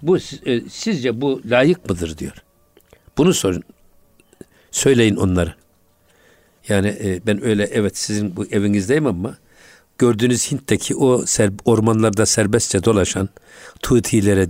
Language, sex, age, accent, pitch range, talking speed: Turkish, male, 60-79, native, 105-145 Hz, 105 wpm